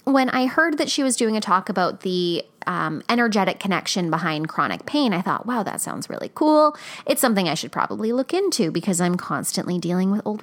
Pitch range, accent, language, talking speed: 180-255 Hz, American, English, 215 wpm